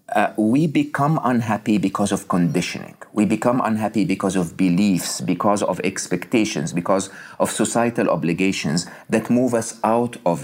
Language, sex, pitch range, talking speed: English, male, 100-130 Hz, 145 wpm